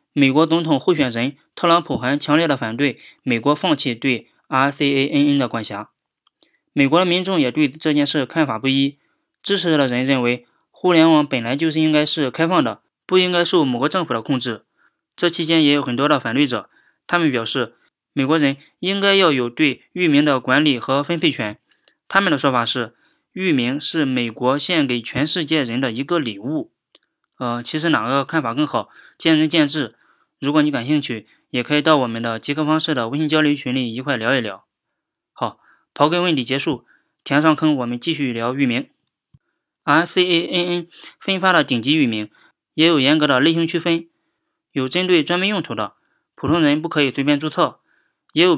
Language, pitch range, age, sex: Chinese, 130-170 Hz, 20-39, male